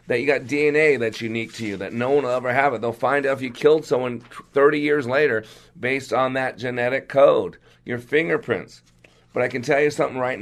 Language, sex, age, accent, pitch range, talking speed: English, male, 40-59, American, 110-140 Hz, 225 wpm